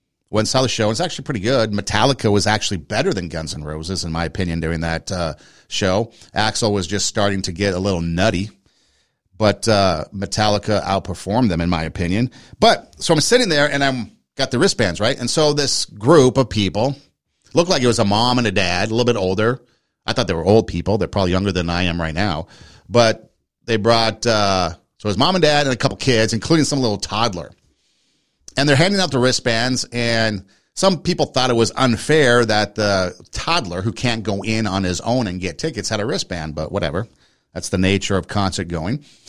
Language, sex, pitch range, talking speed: English, male, 95-125 Hz, 215 wpm